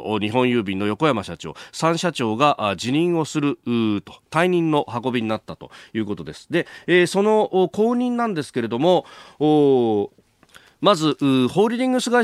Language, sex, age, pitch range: Japanese, male, 40-59, 105-175 Hz